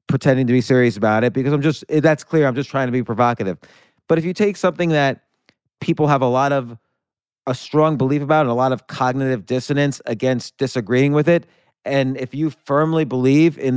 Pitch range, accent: 125-155 Hz, American